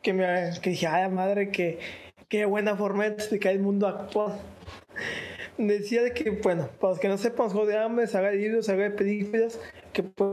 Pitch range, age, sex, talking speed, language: 170-210 Hz, 20-39, male, 190 wpm, Spanish